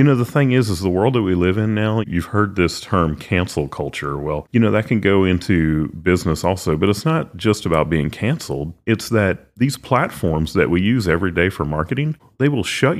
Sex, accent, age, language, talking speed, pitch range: male, American, 40-59, English, 225 wpm, 80-105 Hz